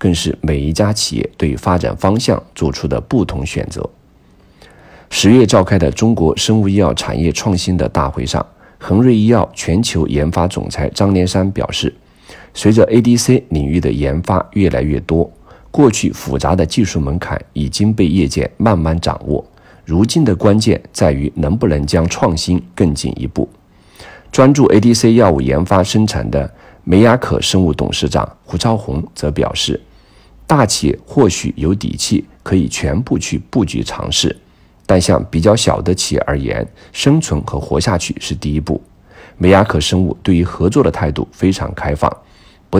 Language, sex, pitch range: Chinese, male, 80-110 Hz